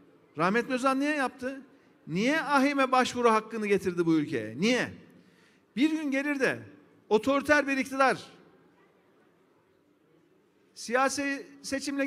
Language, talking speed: Turkish, 105 wpm